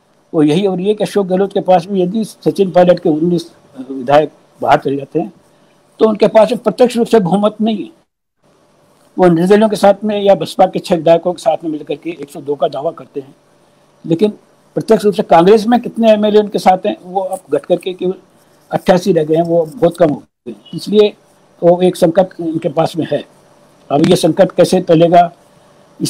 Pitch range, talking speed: 160-195 Hz, 205 wpm